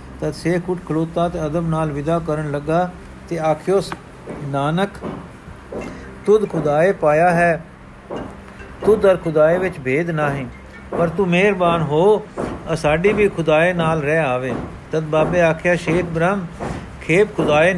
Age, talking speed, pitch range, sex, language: 60-79, 135 wpm, 145-170 Hz, male, Punjabi